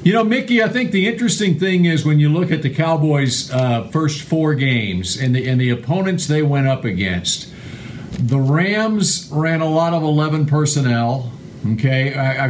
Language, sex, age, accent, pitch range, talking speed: English, male, 50-69, American, 130-160 Hz, 180 wpm